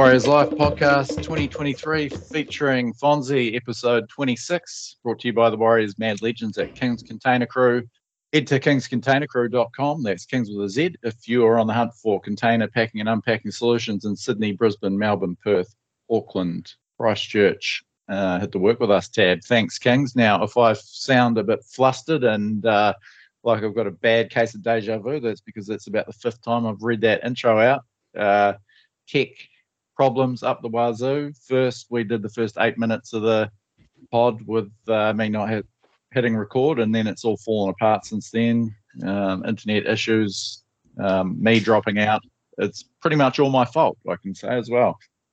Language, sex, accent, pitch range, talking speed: English, male, Australian, 110-125 Hz, 175 wpm